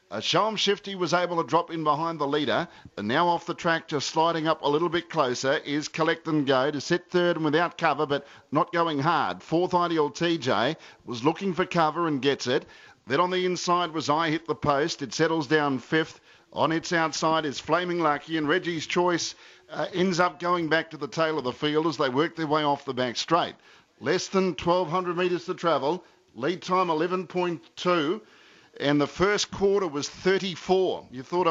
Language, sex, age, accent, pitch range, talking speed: English, male, 50-69, Australian, 155-180 Hz, 200 wpm